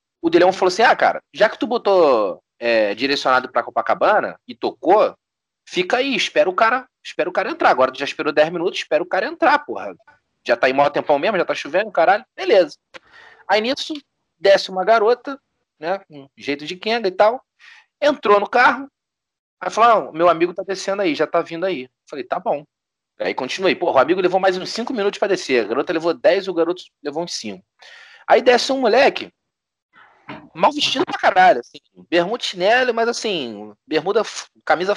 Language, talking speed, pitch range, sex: Portuguese, 195 wpm, 170-275 Hz, male